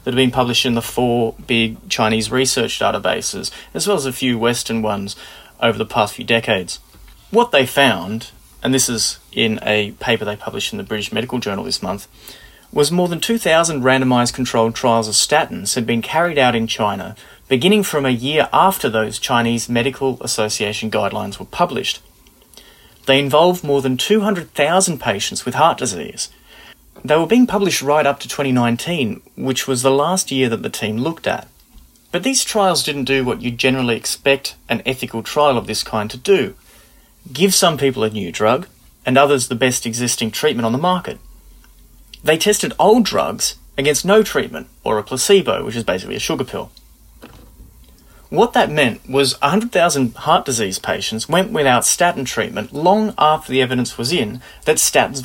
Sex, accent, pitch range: male, Australian, 115-155 Hz